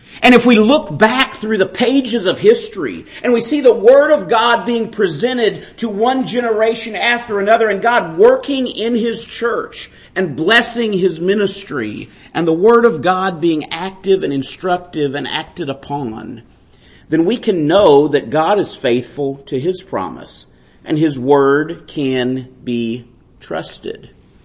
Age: 50-69